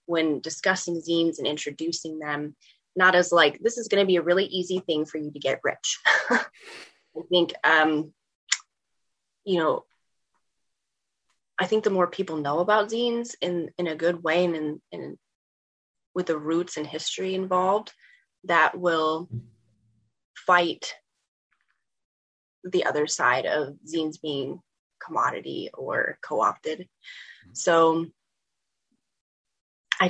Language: English